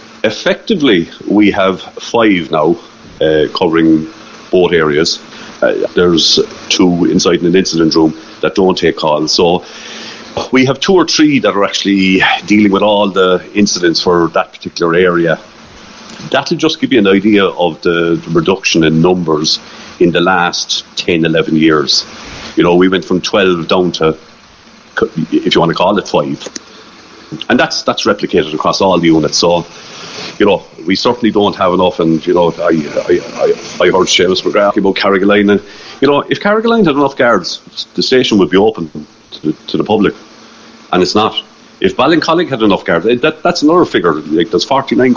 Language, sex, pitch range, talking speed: English, male, 85-145 Hz, 175 wpm